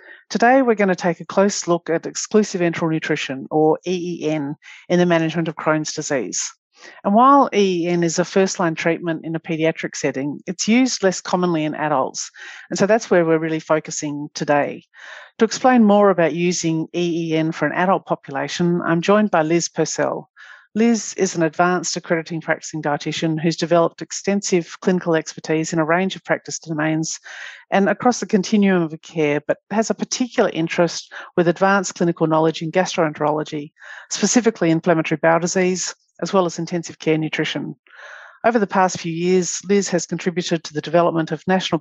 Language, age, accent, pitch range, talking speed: English, 50-69, Australian, 160-190 Hz, 170 wpm